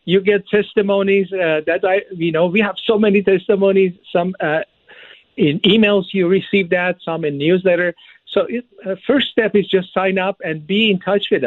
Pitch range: 145-195 Hz